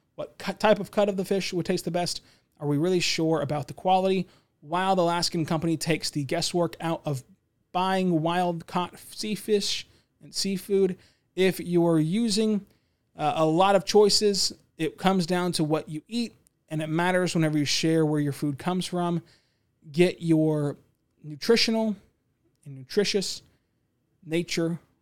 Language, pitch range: English, 155-190 Hz